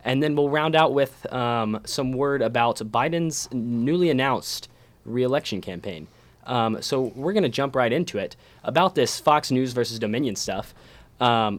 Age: 10-29